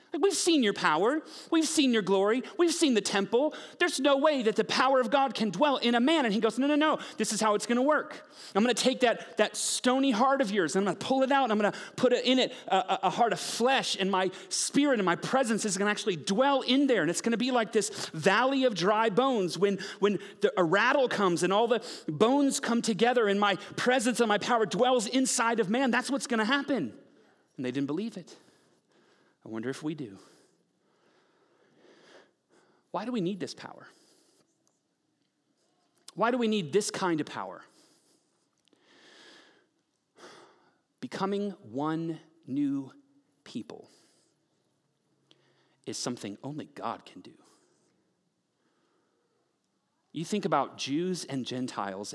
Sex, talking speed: male, 180 wpm